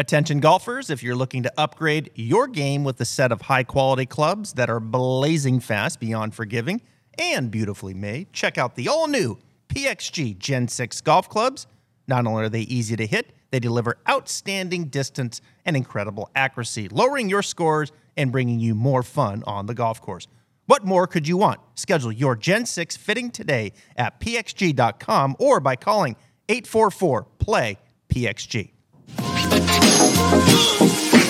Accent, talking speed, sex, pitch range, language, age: American, 145 wpm, male, 120-160 Hz, English, 30-49